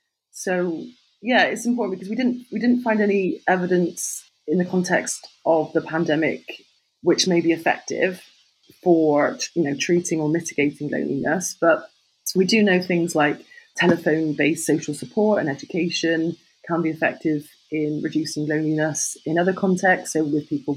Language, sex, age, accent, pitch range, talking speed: English, female, 30-49, British, 150-180 Hz, 150 wpm